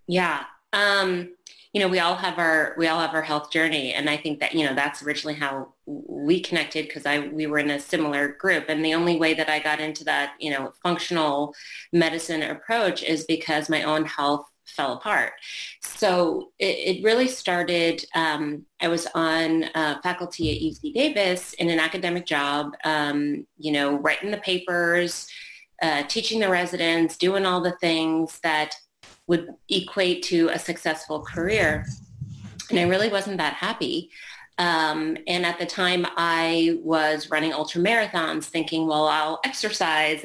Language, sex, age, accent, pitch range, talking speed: English, female, 30-49, American, 155-175 Hz, 170 wpm